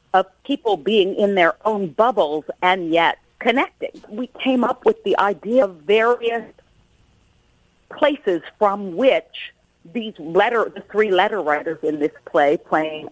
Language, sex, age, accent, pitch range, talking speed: English, female, 50-69, American, 180-245 Hz, 140 wpm